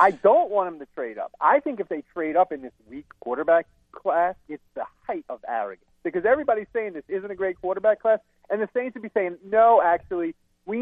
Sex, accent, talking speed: male, American, 225 wpm